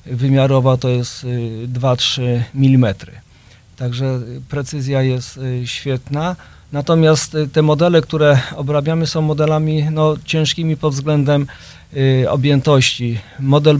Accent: native